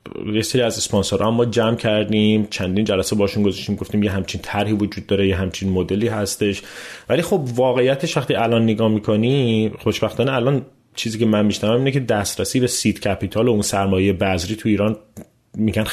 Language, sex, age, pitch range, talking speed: Persian, male, 30-49, 100-120 Hz, 175 wpm